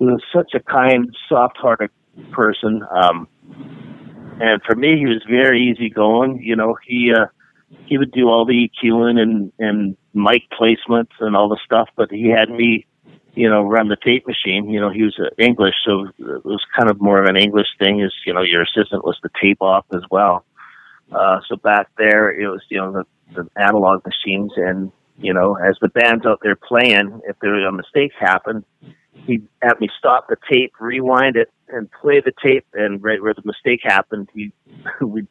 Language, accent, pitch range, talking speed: English, American, 100-120 Hz, 195 wpm